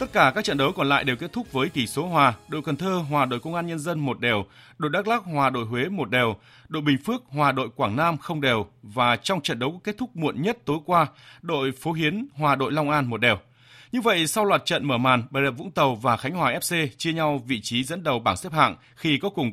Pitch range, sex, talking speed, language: 125-165 Hz, male, 265 wpm, Vietnamese